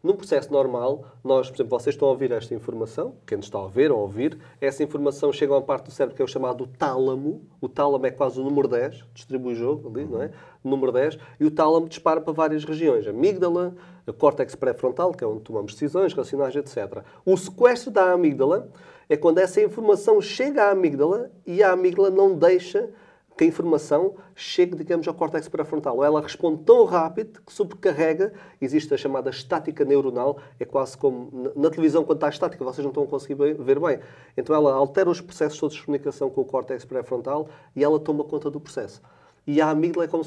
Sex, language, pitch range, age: male, Portuguese, 140-180 Hz, 30-49